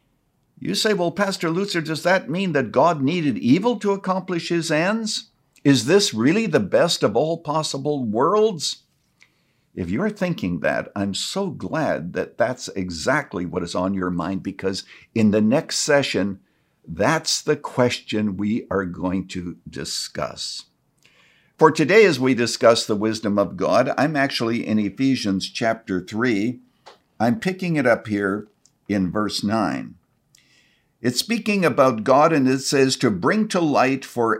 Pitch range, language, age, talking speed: 110-170 Hz, English, 60-79, 155 wpm